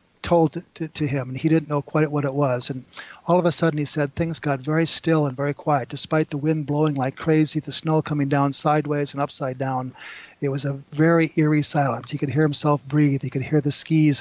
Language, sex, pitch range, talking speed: English, male, 135-155 Hz, 235 wpm